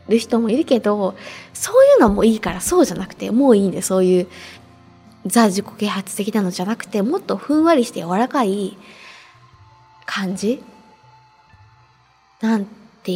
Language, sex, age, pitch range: Japanese, female, 20-39, 185-265 Hz